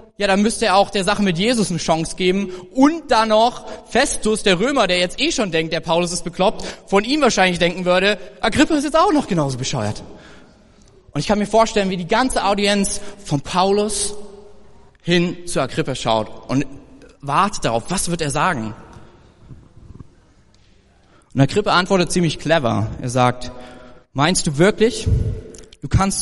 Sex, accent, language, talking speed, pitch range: male, German, German, 165 wpm, 130-205 Hz